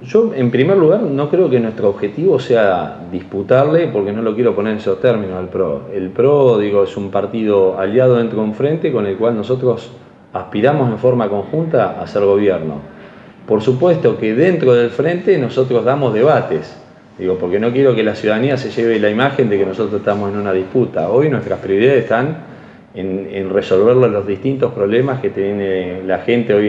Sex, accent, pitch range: male, Argentinian, 100-130 Hz